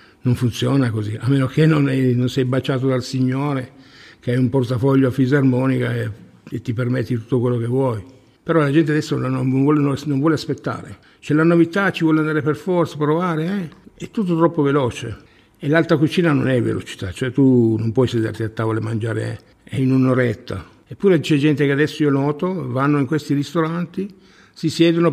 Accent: native